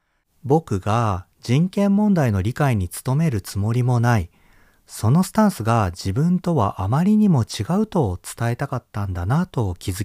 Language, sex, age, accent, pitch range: Japanese, male, 40-59, native, 95-150 Hz